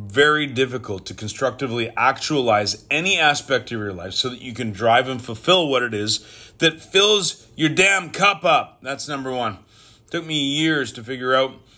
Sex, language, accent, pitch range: male, English, American, 115-150 Hz